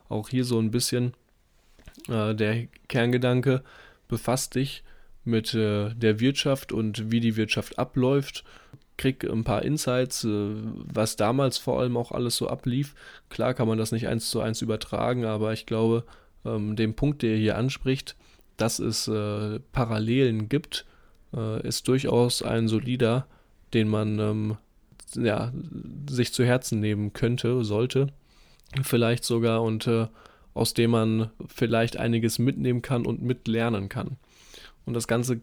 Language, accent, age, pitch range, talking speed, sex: German, German, 10-29, 110-125 Hz, 145 wpm, male